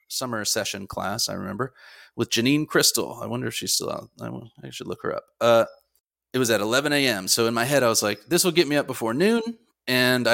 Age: 30-49